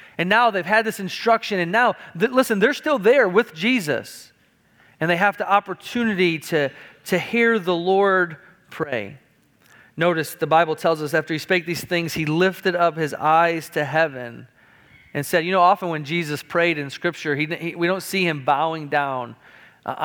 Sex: male